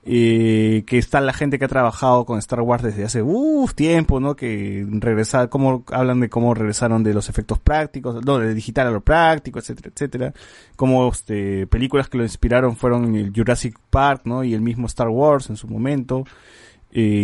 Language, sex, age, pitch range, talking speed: Spanish, male, 20-39, 115-145 Hz, 195 wpm